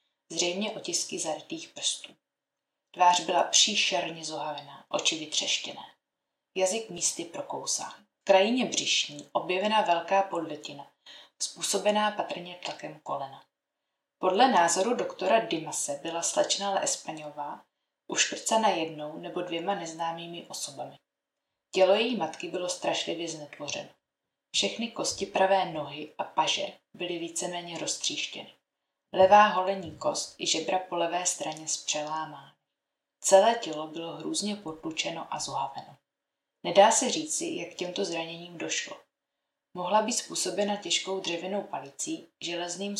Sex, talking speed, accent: female, 115 wpm, native